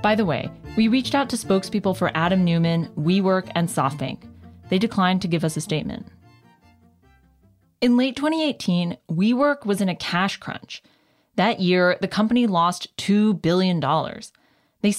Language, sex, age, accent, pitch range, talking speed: English, female, 20-39, American, 175-225 Hz, 150 wpm